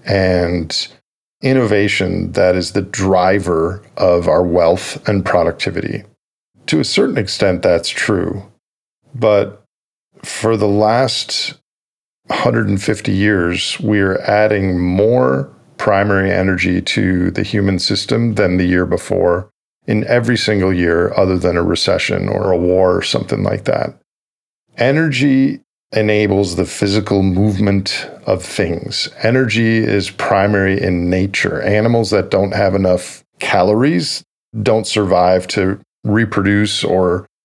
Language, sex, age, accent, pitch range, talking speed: English, male, 50-69, American, 95-110 Hz, 120 wpm